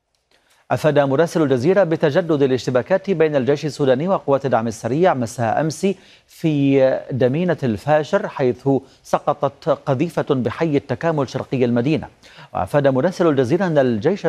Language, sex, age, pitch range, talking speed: Arabic, male, 40-59, 125-160 Hz, 120 wpm